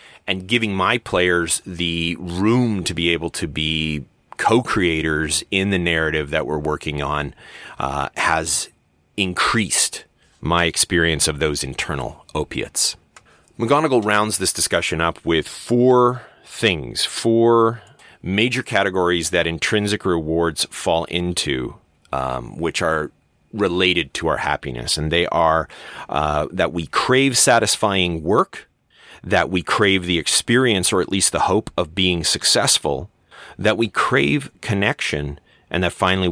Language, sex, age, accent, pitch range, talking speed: English, male, 30-49, American, 80-105 Hz, 130 wpm